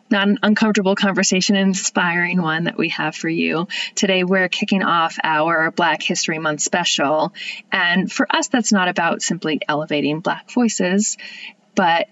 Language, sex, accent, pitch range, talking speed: English, female, American, 165-215 Hz, 155 wpm